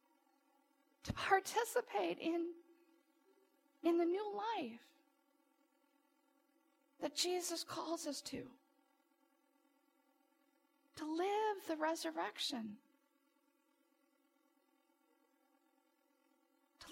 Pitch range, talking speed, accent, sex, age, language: 280-290 Hz, 60 wpm, American, female, 40-59, English